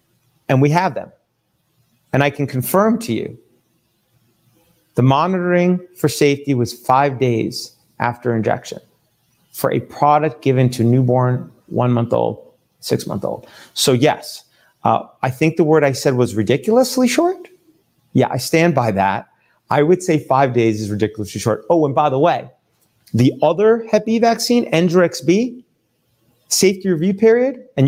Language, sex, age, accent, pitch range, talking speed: English, male, 40-59, American, 120-170 Hz, 145 wpm